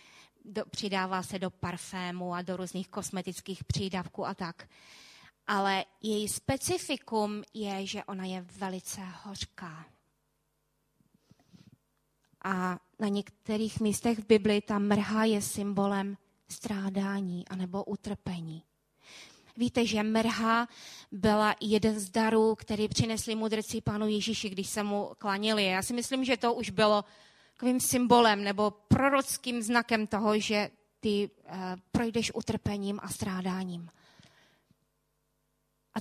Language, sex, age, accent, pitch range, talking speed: Czech, female, 20-39, native, 190-225 Hz, 115 wpm